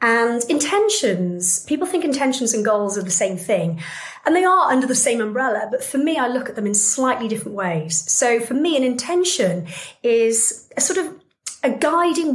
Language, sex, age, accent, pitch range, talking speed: English, female, 30-49, British, 205-280 Hz, 195 wpm